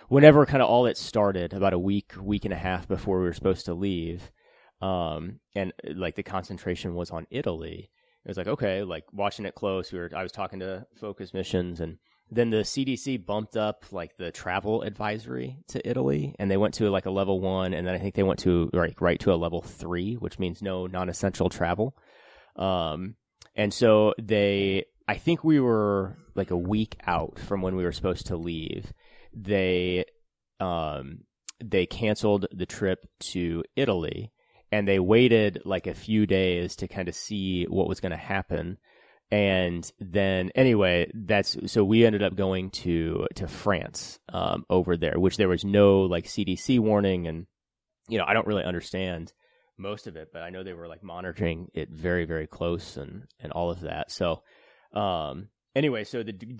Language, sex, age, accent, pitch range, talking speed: English, male, 30-49, American, 90-105 Hz, 190 wpm